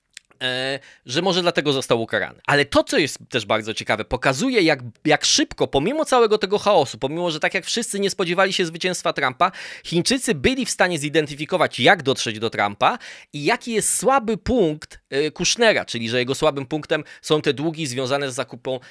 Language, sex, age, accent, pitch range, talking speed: Polish, male, 20-39, native, 125-175 Hz, 180 wpm